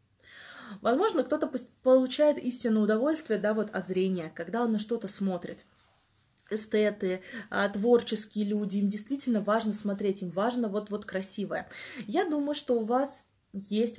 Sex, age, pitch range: female, 20-39, 200-250 Hz